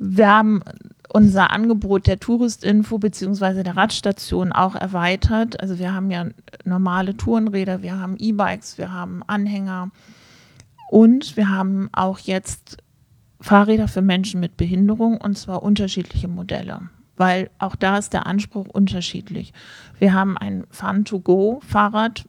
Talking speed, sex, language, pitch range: 130 wpm, male, German, 175-200 Hz